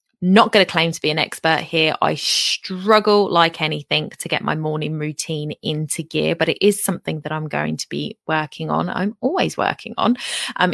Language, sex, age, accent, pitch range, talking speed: English, female, 20-39, British, 160-195 Hz, 200 wpm